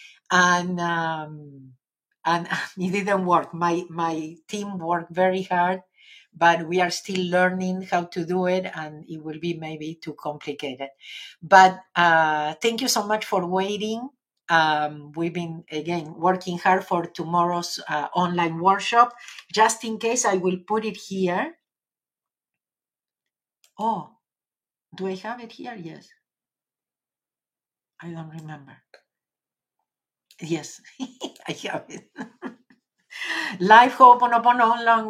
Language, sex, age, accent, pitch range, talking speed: English, female, 50-69, Spanish, 170-220 Hz, 125 wpm